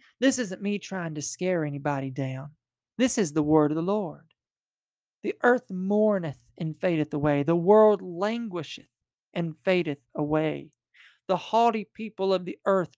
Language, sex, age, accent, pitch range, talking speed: English, male, 40-59, American, 155-200 Hz, 155 wpm